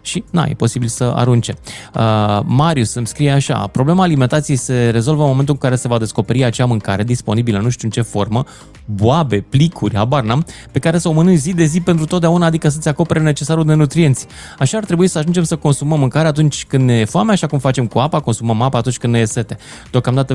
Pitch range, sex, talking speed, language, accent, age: 115-160 Hz, male, 220 wpm, Romanian, native, 20-39